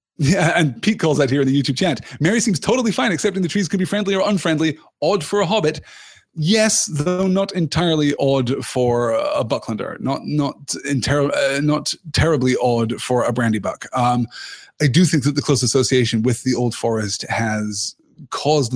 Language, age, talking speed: English, 30-49, 190 wpm